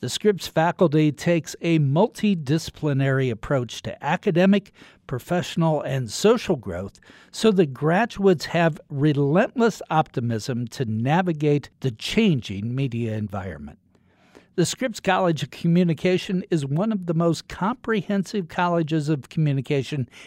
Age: 60-79